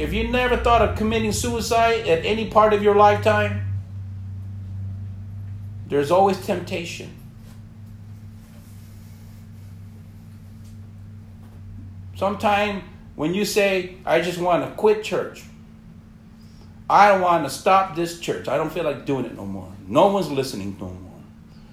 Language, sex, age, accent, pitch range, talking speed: English, male, 50-69, American, 105-165 Hz, 125 wpm